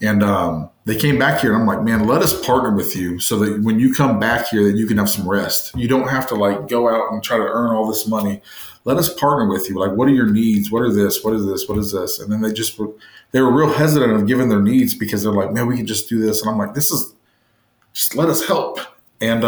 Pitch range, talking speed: 100-120 Hz, 285 wpm